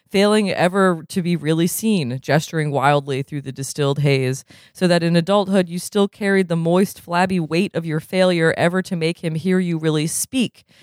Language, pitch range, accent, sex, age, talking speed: English, 150-195 Hz, American, female, 20-39, 190 wpm